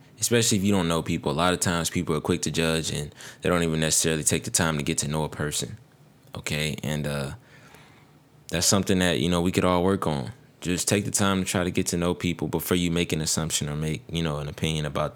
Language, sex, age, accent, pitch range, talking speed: English, male, 20-39, American, 80-95 Hz, 255 wpm